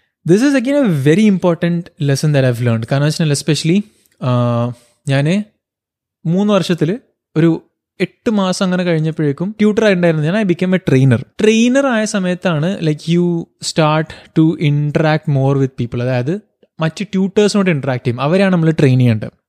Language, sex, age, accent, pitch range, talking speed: Malayalam, male, 20-39, native, 155-190 Hz, 145 wpm